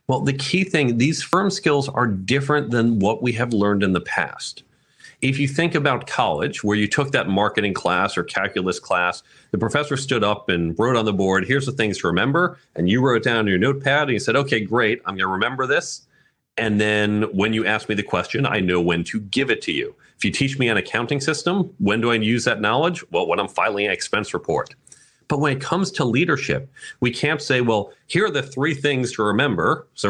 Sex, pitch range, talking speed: male, 110-145 Hz, 230 wpm